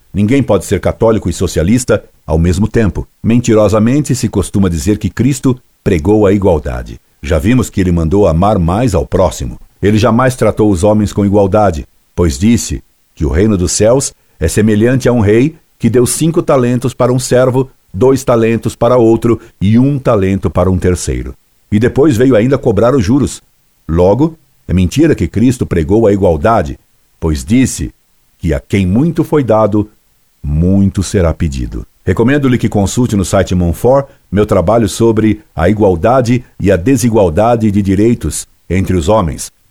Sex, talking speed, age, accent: male, 165 wpm, 60-79, Brazilian